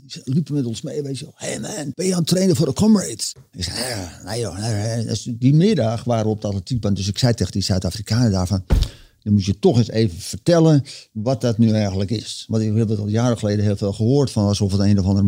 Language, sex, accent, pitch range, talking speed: Dutch, male, Dutch, 100-120 Hz, 260 wpm